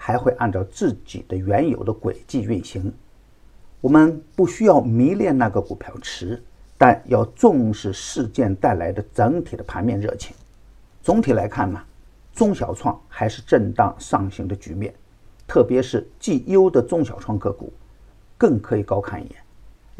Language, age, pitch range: Chinese, 50-69, 100-145 Hz